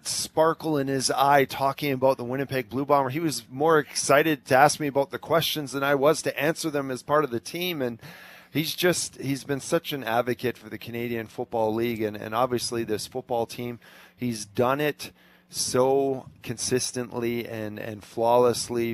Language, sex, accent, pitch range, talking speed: English, male, American, 115-145 Hz, 185 wpm